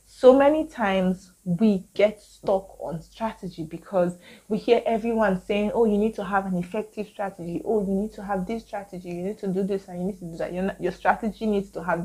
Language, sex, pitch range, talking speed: English, female, 180-215 Hz, 220 wpm